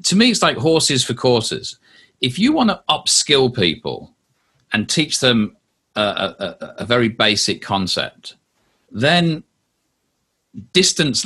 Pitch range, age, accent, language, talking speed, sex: 110-135 Hz, 40-59, British, English, 130 wpm, male